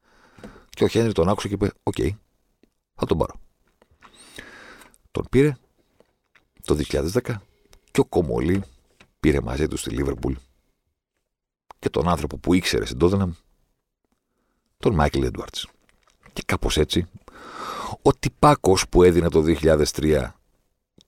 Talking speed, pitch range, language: 120 wpm, 70-100 Hz, Greek